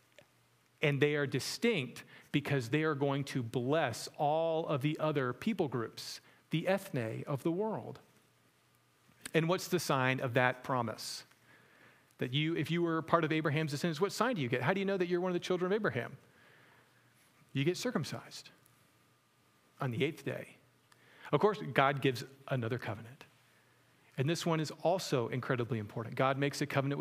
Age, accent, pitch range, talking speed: 40-59, American, 130-165 Hz, 175 wpm